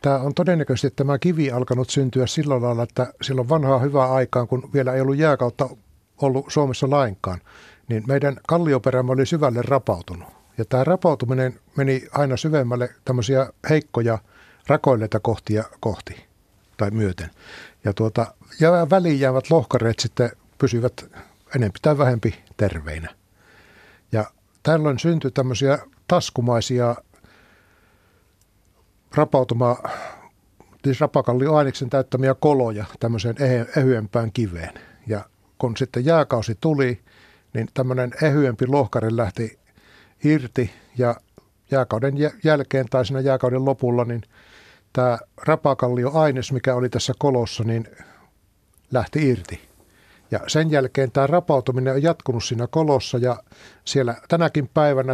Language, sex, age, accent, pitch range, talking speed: Finnish, male, 60-79, native, 115-140 Hz, 120 wpm